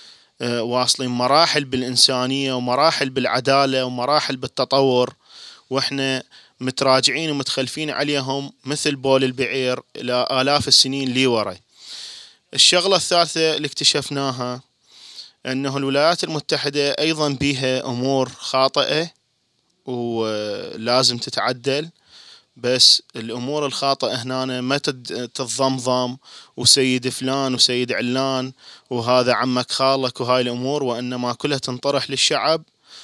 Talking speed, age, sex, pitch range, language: 85 wpm, 20-39, male, 125-140 Hz, Arabic